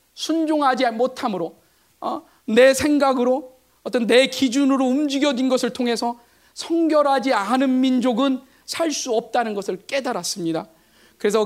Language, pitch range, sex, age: Korean, 220-270 Hz, male, 40-59